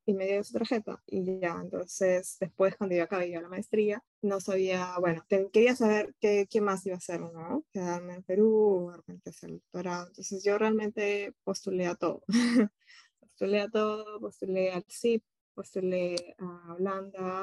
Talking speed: 175 wpm